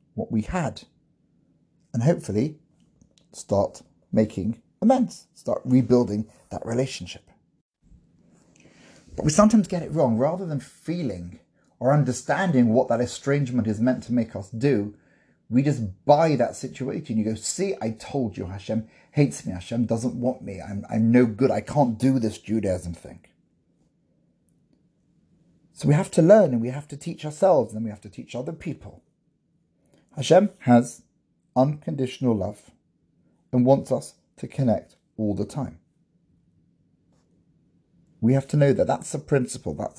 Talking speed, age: 150 wpm, 30-49